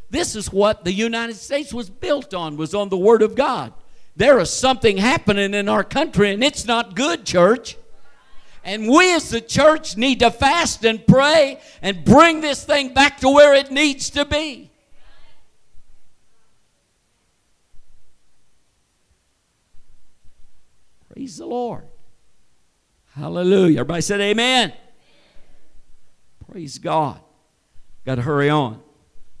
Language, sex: English, male